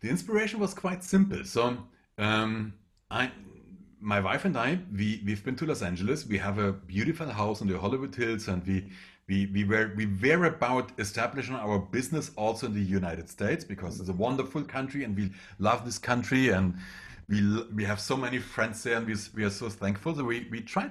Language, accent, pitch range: English, German, 95-130 Hz